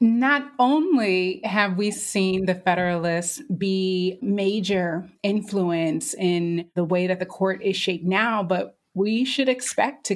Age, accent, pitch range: 30-49, American, 180-210 Hz